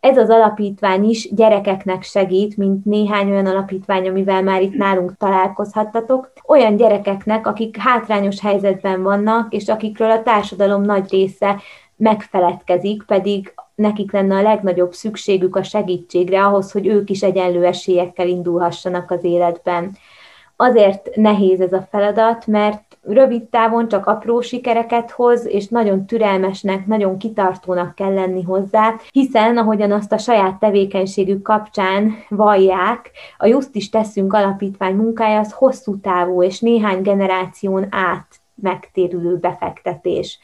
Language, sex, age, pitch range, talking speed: Hungarian, female, 20-39, 190-220 Hz, 130 wpm